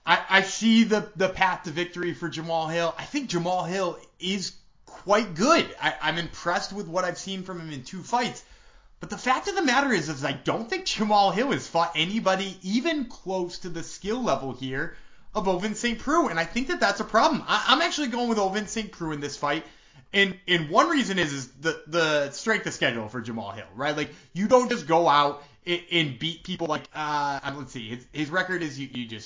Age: 20-39